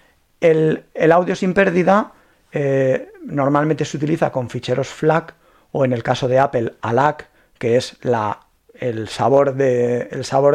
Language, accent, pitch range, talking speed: Spanish, Spanish, 130-165 Hz, 130 wpm